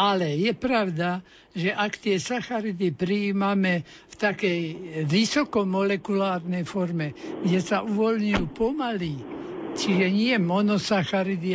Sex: male